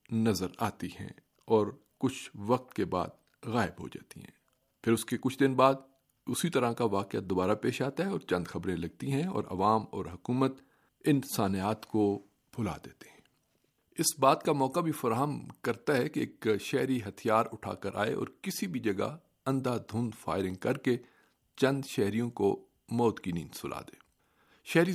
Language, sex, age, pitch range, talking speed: Urdu, male, 50-69, 100-130 Hz, 175 wpm